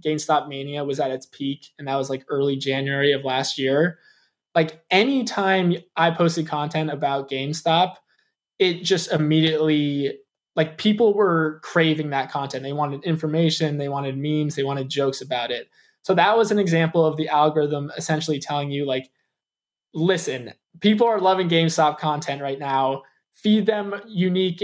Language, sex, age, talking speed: English, male, 20-39, 160 wpm